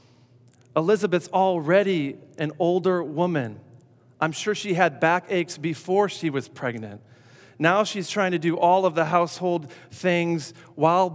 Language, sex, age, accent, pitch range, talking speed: English, male, 40-59, American, 125-170 Hz, 140 wpm